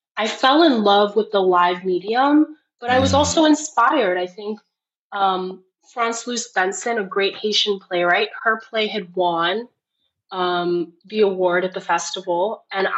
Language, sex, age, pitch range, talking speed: English, female, 20-39, 185-230 Hz, 155 wpm